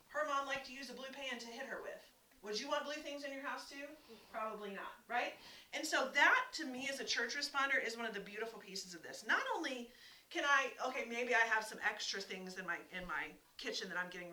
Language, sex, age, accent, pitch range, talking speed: English, female, 30-49, American, 210-275 Hz, 250 wpm